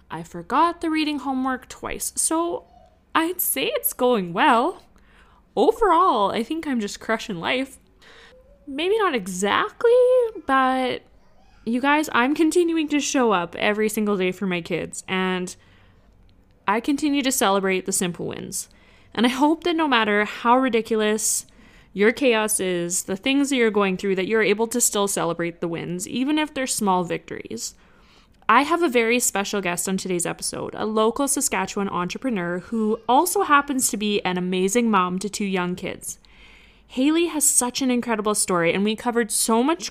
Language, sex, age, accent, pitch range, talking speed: English, female, 20-39, American, 190-265 Hz, 165 wpm